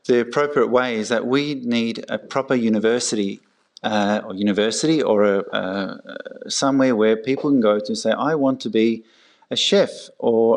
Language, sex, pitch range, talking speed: English, male, 105-130 Hz, 160 wpm